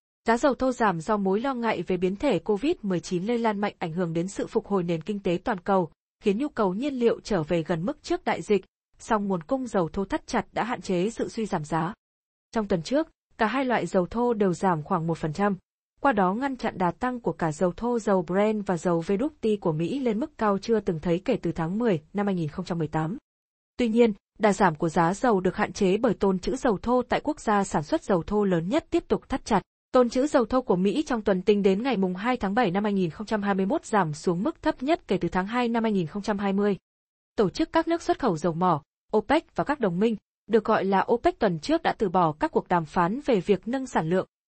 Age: 20-39